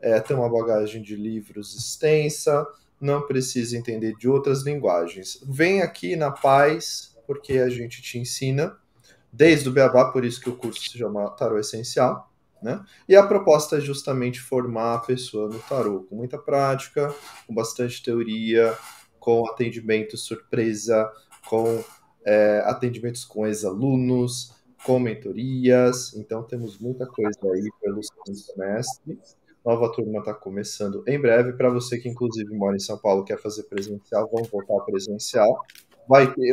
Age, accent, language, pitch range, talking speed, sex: 20-39, Brazilian, Portuguese, 105-130 Hz, 150 wpm, male